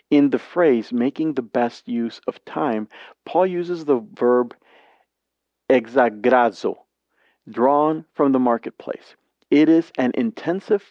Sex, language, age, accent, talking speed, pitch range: male, English, 40-59, American, 120 wpm, 120-155 Hz